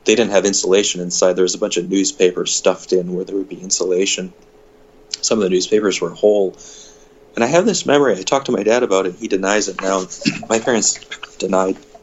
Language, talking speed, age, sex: English, 215 wpm, 30-49, male